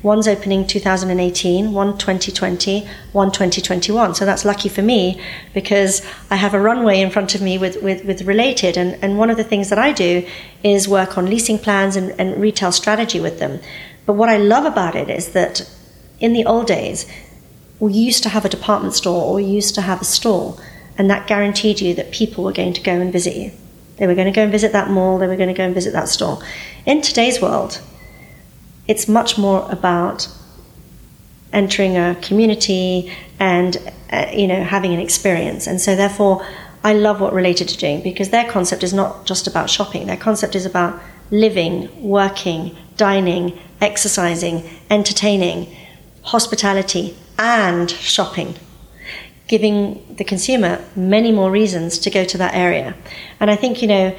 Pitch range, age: 185-210 Hz, 40-59